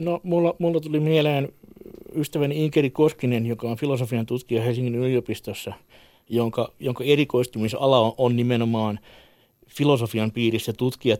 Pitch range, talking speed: 110-135 Hz, 125 wpm